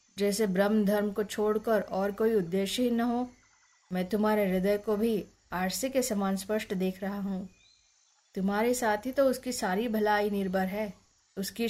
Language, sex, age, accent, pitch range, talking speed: Hindi, female, 20-39, native, 190-235 Hz, 170 wpm